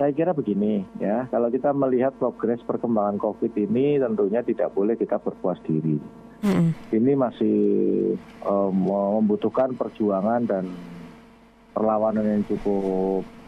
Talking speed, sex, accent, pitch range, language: 115 wpm, male, native, 105-155 Hz, Indonesian